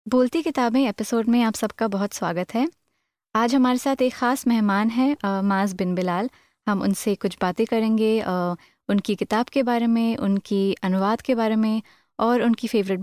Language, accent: Hindi, native